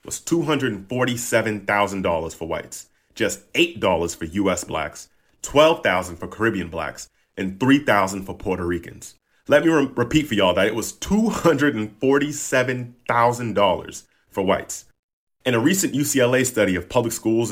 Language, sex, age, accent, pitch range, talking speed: English, male, 40-59, American, 95-125 Hz, 125 wpm